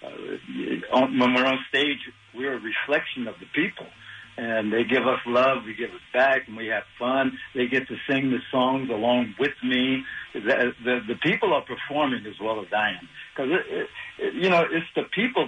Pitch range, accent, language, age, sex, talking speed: 115-135 Hz, American, English, 60-79, male, 195 wpm